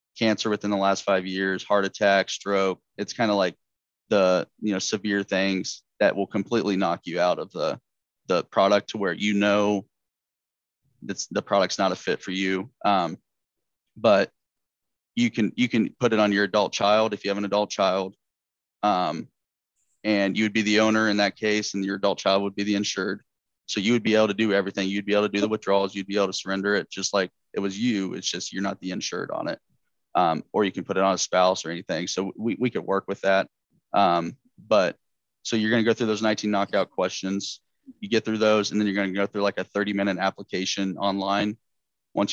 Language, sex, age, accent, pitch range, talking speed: English, male, 20-39, American, 95-105 Hz, 220 wpm